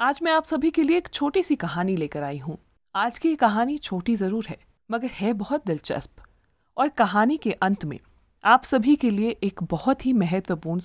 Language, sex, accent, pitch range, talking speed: Hindi, female, native, 175-265 Hz, 200 wpm